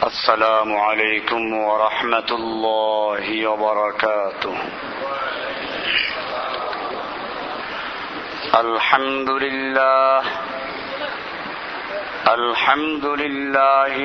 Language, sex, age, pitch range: Bengali, male, 50-69, 135-160 Hz